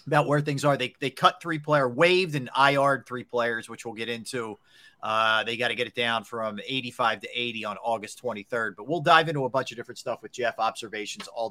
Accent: American